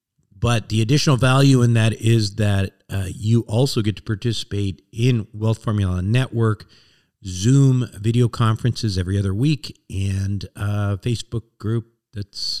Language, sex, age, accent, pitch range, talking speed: English, male, 50-69, American, 100-125 Hz, 140 wpm